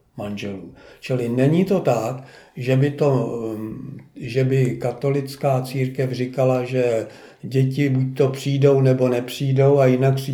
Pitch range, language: 115-135 Hz, Czech